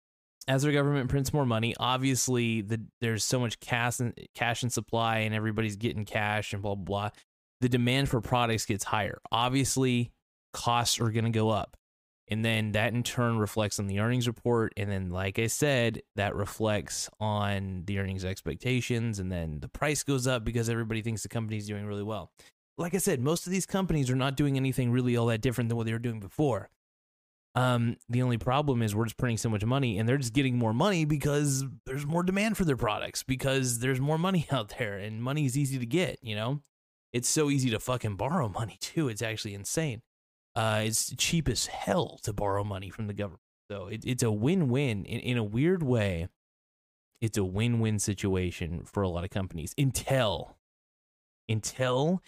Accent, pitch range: American, 105-130 Hz